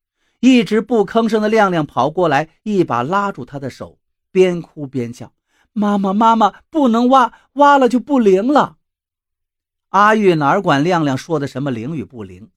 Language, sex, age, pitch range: Chinese, male, 50-69, 130-200 Hz